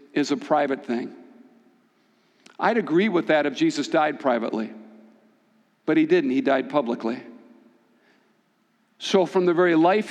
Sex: male